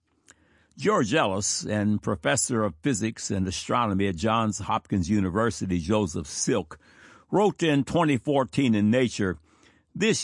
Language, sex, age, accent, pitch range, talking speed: English, male, 60-79, American, 105-145 Hz, 115 wpm